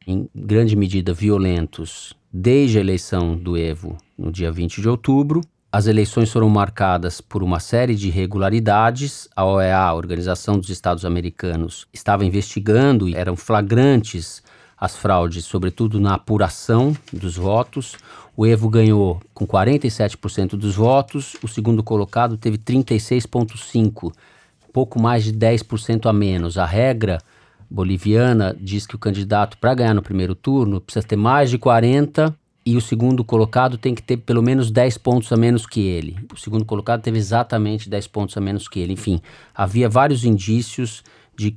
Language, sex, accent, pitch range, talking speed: Portuguese, male, Brazilian, 95-120 Hz, 155 wpm